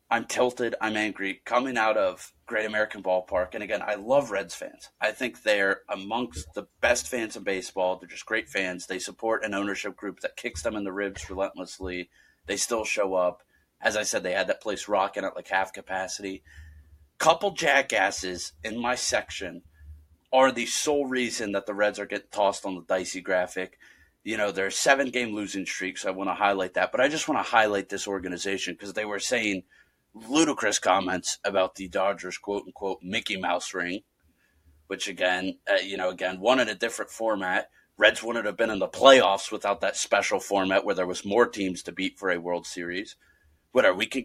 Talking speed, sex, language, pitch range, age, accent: 200 wpm, male, English, 95-110 Hz, 30-49, American